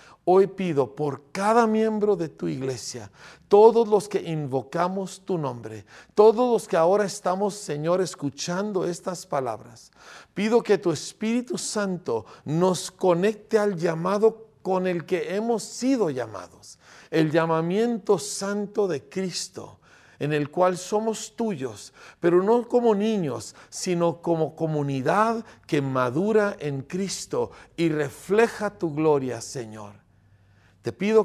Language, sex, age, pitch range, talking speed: Spanish, male, 50-69, 135-205 Hz, 125 wpm